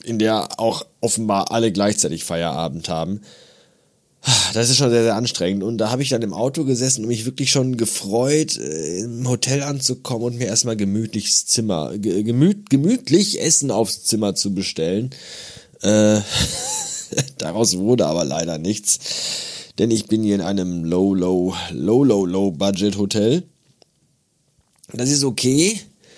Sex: male